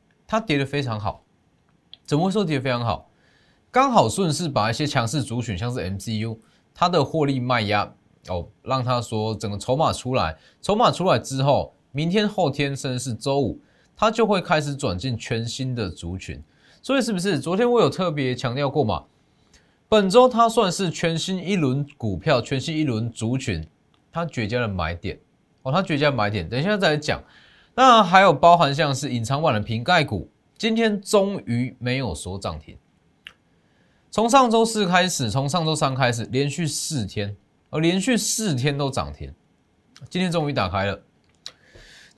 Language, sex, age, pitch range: Chinese, male, 20-39, 115-175 Hz